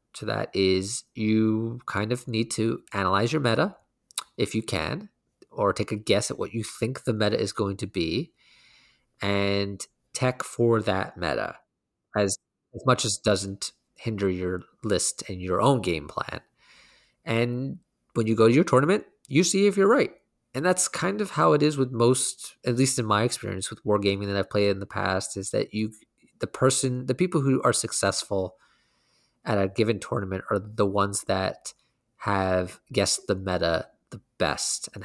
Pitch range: 100-125 Hz